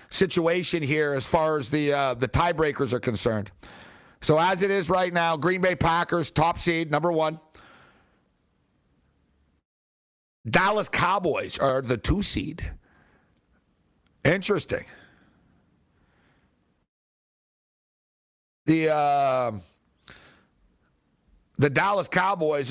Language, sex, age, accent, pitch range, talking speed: English, male, 60-79, American, 130-180 Hz, 95 wpm